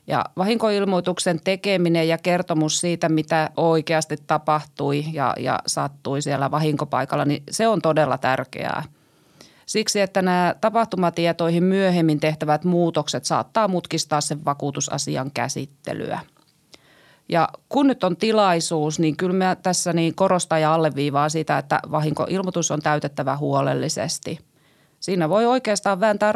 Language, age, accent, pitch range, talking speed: Finnish, 30-49, native, 155-190 Hz, 125 wpm